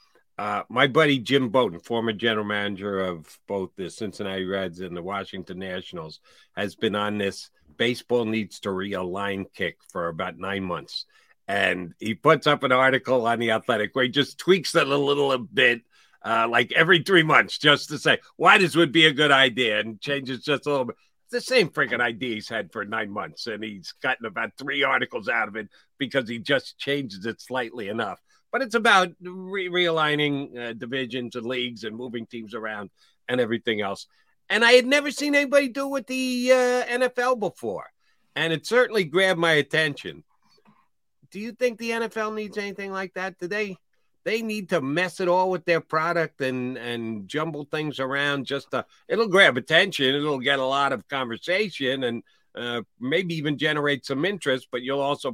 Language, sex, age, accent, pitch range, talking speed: English, male, 50-69, American, 115-175 Hz, 185 wpm